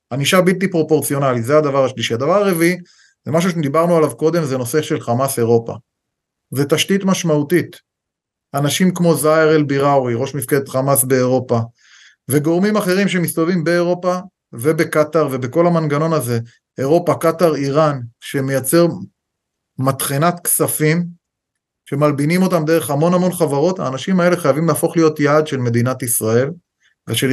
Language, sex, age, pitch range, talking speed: Hebrew, male, 30-49, 135-170 Hz, 130 wpm